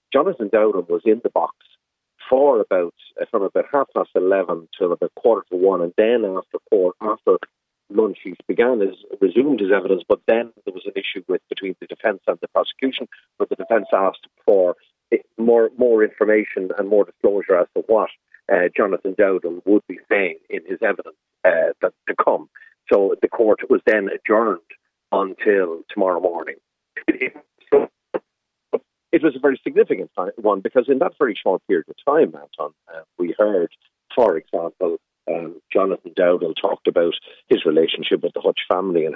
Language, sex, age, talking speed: English, male, 40-59, 170 wpm